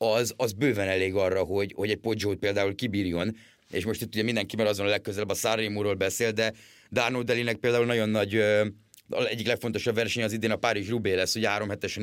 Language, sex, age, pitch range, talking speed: Hungarian, male, 30-49, 105-120 Hz, 190 wpm